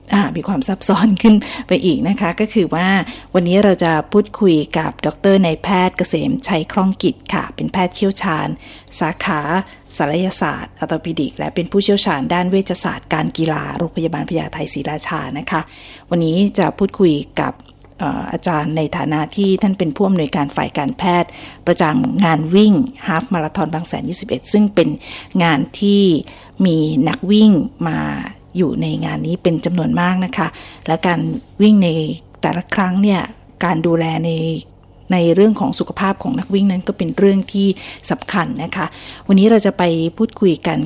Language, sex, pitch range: Thai, female, 165-200 Hz